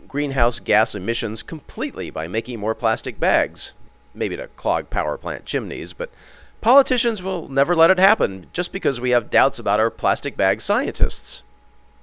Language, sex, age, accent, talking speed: English, male, 40-59, American, 160 wpm